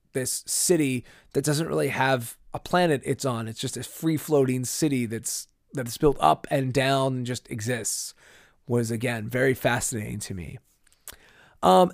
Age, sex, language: 30-49, male, English